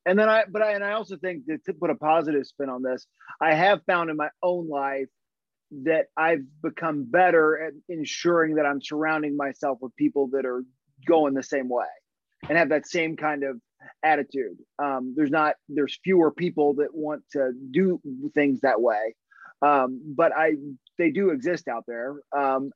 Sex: male